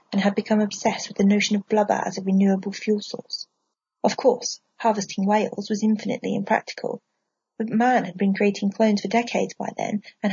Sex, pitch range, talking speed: female, 200-240 Hz, 185 wpm